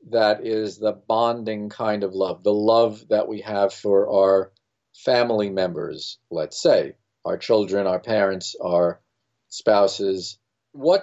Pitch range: 105-125 Hz